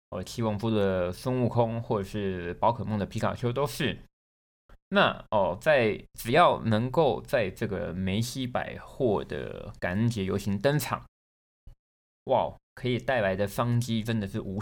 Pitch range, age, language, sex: 100-125 Hz, 20-39, Chinese, male